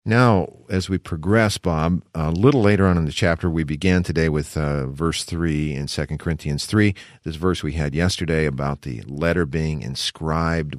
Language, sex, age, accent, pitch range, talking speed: English, male, 50-69, American, 80-115 Hz, 185 wpm